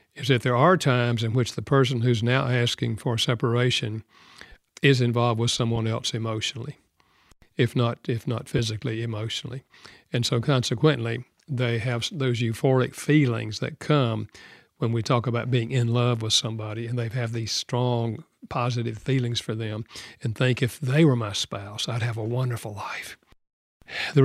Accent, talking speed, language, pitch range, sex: American, 165 wpm, English, 115-135 Hz, male